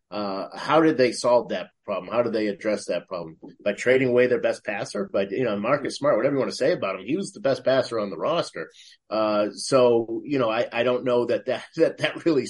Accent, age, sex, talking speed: American, 30-49, male, 255 wpm